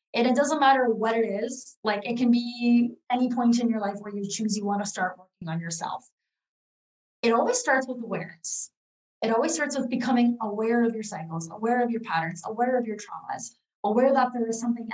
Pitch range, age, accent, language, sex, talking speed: 210-250 Hz, 20-39, American, English, female, 215 wpm